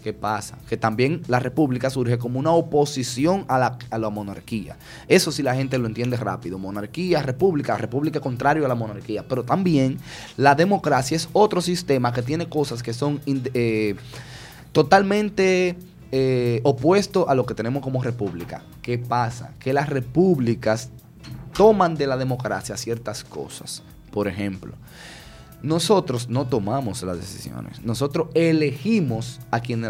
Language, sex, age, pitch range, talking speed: English, male, 20-39, 115-150 Hz, 145 wpm